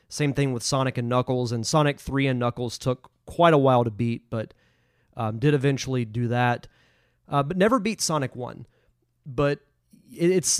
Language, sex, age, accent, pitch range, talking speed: English, male, 30-49, American, 120-145 Hz, 175 wpm